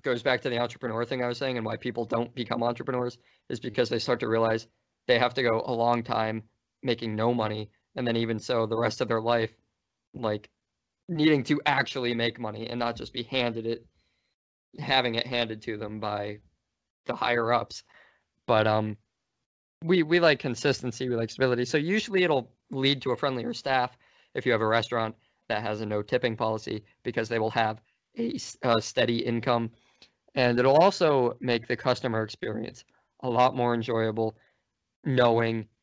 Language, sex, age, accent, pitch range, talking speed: English, male, 20-39, American, 110-125 Hz, 185 wpm